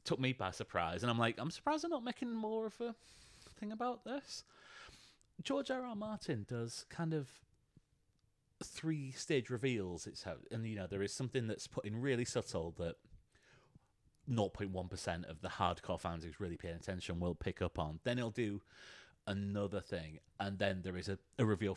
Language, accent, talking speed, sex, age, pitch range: English, British, 185 wpm, male, 30-49, 100-160 Hz